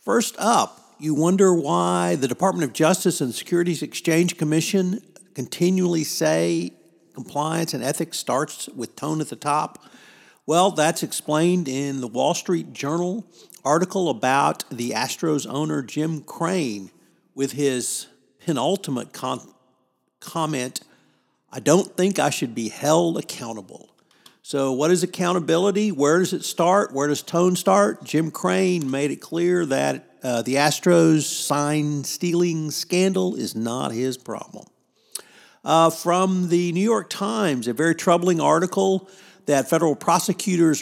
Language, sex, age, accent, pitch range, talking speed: English, male, 50-69, American, 135-175 Hz, 135 wpm